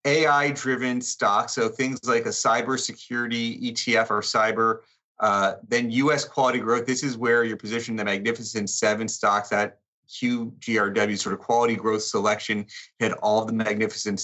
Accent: American